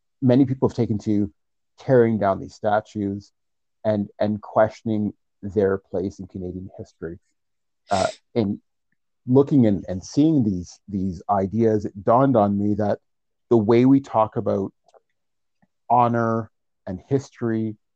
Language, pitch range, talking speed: English, 100-120 Hz, 135 wpm